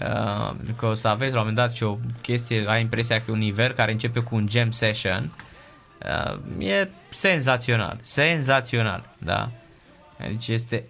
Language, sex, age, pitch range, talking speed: Romanian, male, 20-39, 110-130 Hz, 160 wpm